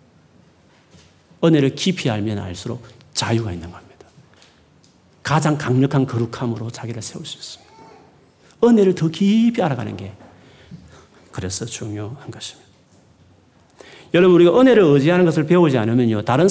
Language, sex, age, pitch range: Korean, male, 40-59, 105-170 Hz